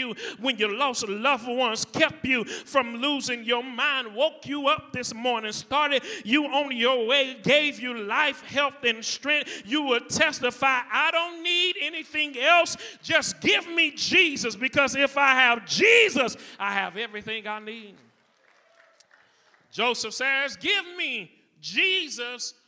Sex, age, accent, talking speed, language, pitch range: male, 40-59, American, 145 wpm, English, 205-280 Hz